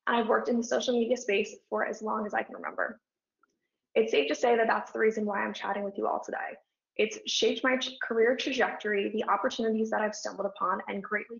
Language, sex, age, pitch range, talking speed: English, female, 20-39, 205-245 Hz, 225 wpm